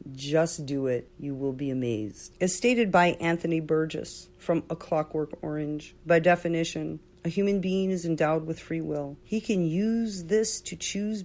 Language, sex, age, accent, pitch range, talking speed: English, female, 40-59, American, 160-195 Hz, 170 wpm